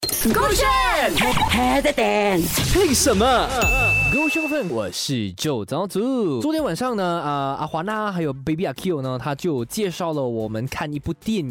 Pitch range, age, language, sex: 125-180 Hz, 20-39, Chinese, male